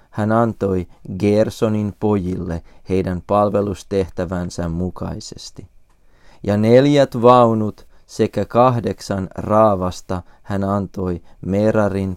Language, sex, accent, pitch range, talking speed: Finnish, male, native, 90-110 Hz, 80 wpm